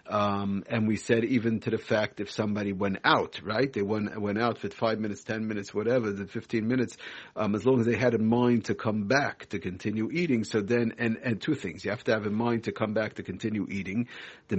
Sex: male